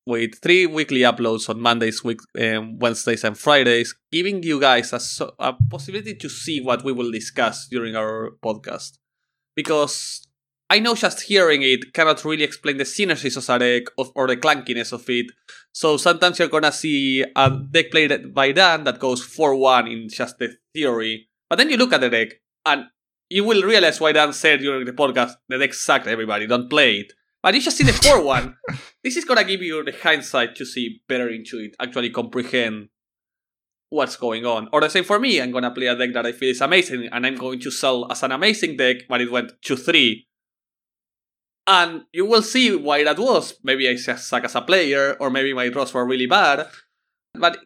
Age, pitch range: 20-39, 120-155 Hz